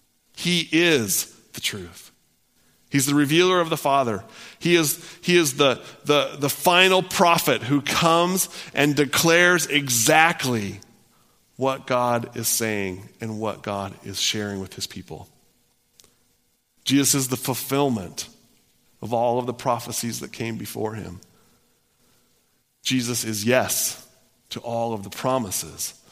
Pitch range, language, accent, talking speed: 110-145 Hz, English, American, 125 wpm